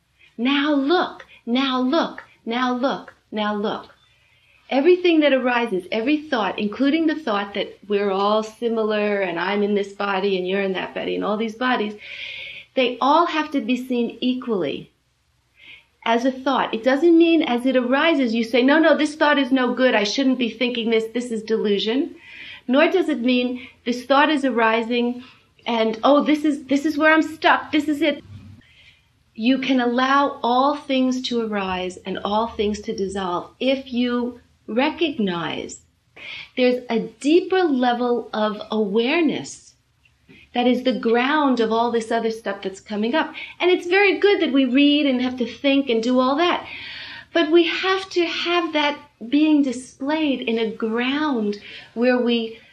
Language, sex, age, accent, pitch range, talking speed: English, female, 40-59, American, 225-290 Hz, 170 wpm